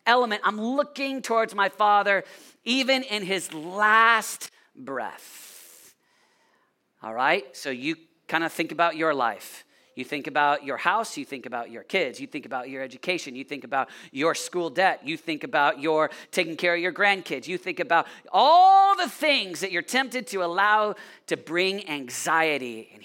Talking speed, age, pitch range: 170 wpm, 40-59, 155-225 Hz